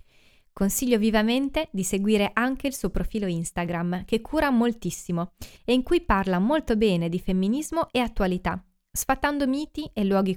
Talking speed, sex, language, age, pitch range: 150 wpm, female, Italian, 20-39, 185-255 Hz